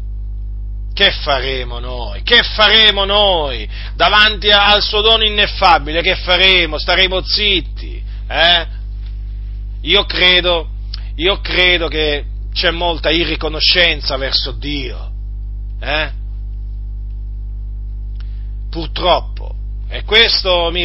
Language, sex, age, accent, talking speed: Italian, male, 40-59, native, 90 wpm